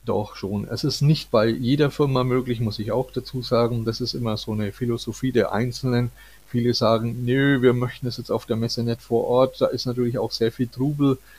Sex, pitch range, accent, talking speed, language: male, 115-135 Hz, German, 220 wpm, German